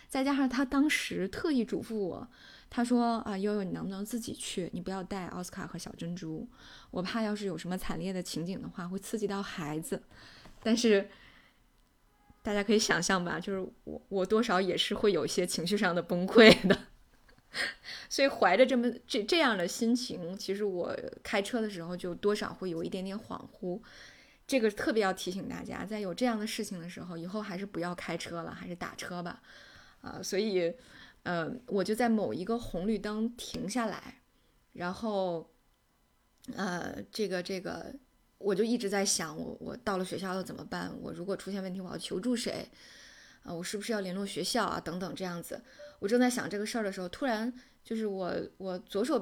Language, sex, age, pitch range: Chinese, female, 10-29, 185-230 Hz